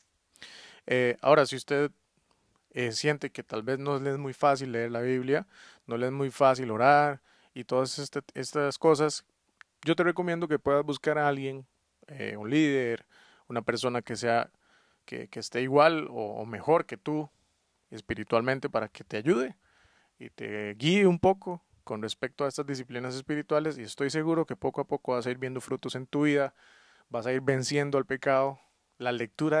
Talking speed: 185 wpm